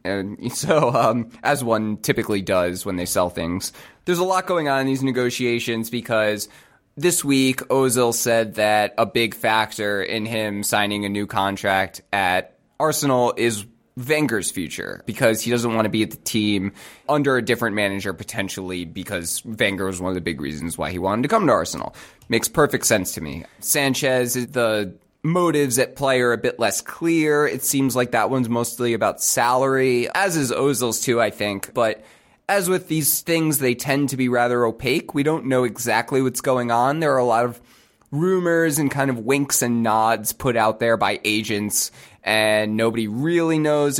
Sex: male